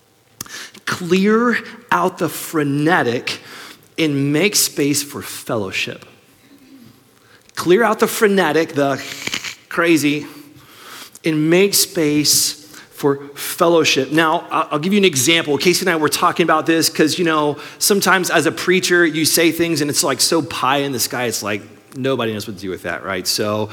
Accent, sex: American, male